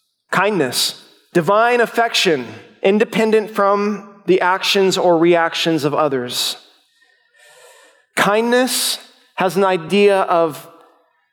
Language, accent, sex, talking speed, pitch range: English, American, male, 85 wpm, 180-245 Hz